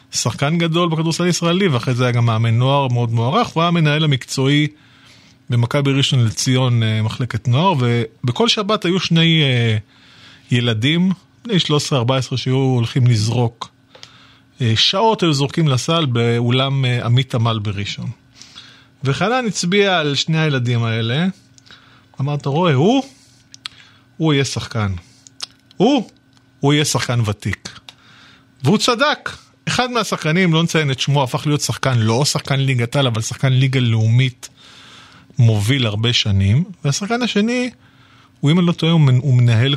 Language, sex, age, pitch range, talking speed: Hebrew, male, 30-49, 120-165 Hz, 130 wpm